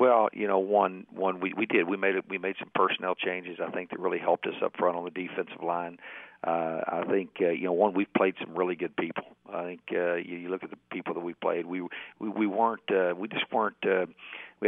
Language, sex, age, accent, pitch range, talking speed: English, male, 50-69, American, 90-95 Hz, 260 wpm